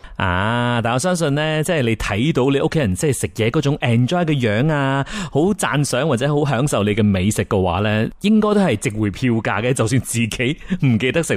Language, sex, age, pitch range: Chinese, male, 30-49, 105-150 Hz